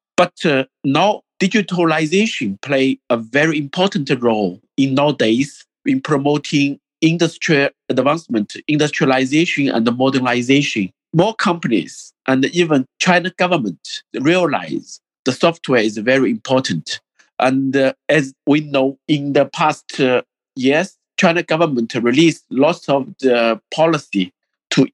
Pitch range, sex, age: 130-170 Hz, male, 50-69